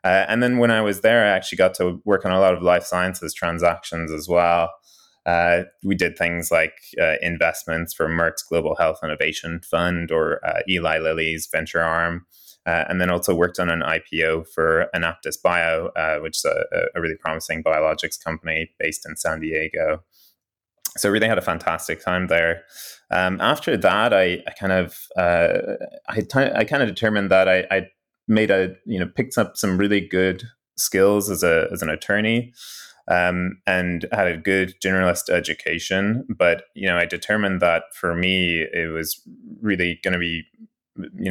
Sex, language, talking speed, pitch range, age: male, English, 180 wpm, 80-95 Hz, 20-39